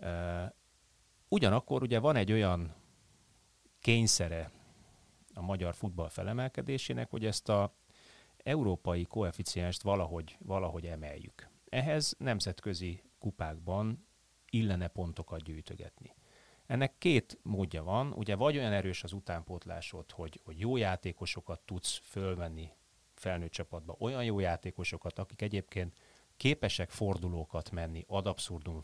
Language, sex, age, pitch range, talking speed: Hungarian, male, 30-49, 85-110 Hz, 110 wpm